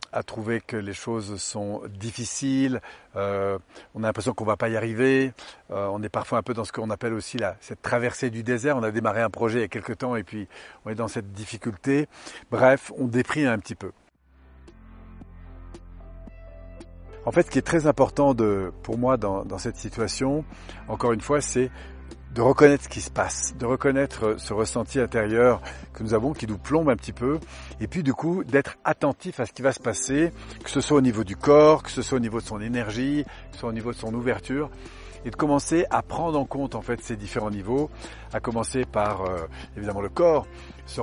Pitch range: 100-130 Hz